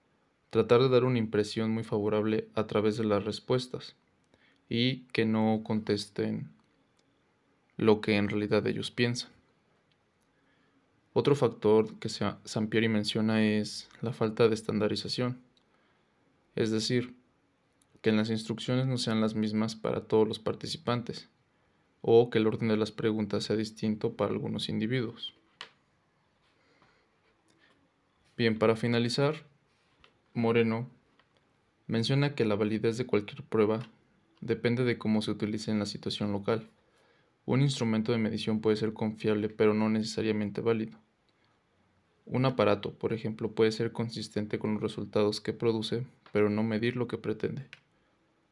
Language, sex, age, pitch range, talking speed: Spanish, male, 20-39, 110-120 Hz, 130 wpm